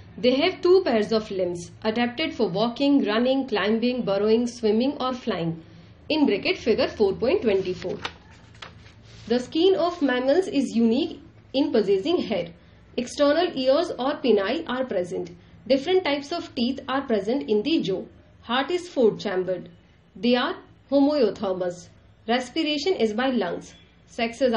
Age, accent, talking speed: 40-59, native, 140 wpm